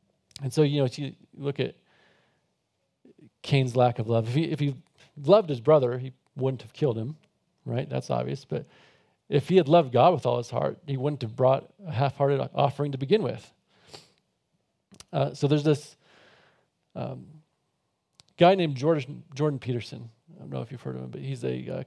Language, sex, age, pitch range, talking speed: English, male, 40-59, 125-155 Hz, 190 wpm